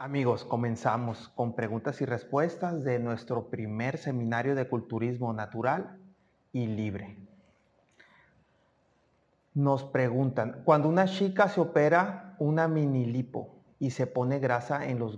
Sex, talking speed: male, 125 wpm